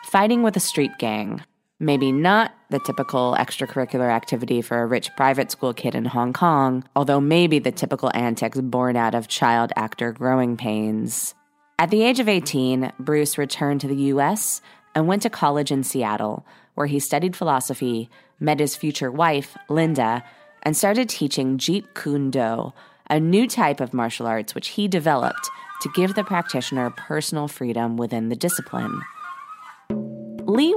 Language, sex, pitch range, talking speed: English, female, 125-165 Hz, 160 wpm